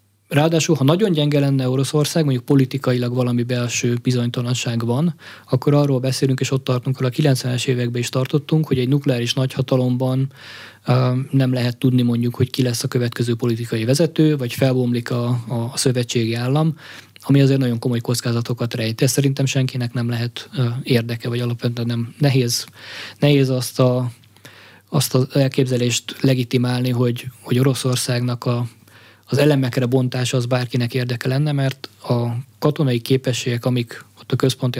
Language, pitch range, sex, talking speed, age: Hungarian, 120-140 Hz, male, 150 wpm, 20-39